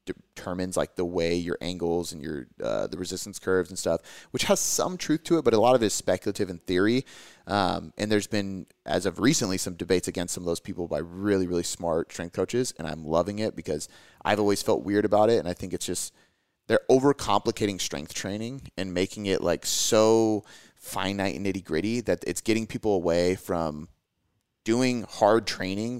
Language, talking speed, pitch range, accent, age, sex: English, 200 wpm, 90-110 Hz, American, 30-49, male